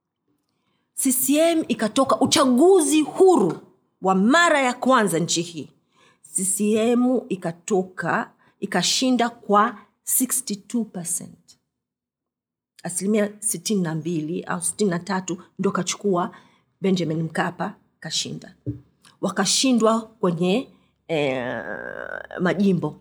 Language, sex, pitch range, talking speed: Swahili, female, 180-245 Hz, 75 wpm